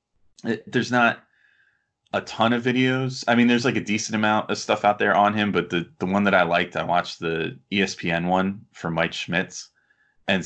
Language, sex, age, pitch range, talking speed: English, male, 20-39, 85-110 Hz, 200 wpm